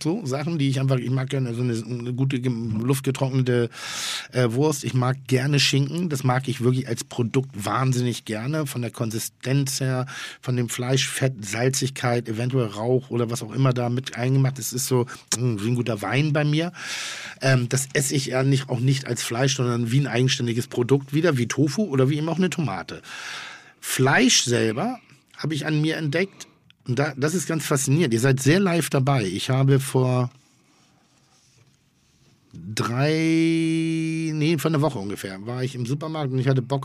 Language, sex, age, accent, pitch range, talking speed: German, male, 50-69, German, 120-145 Hz, 185 wpm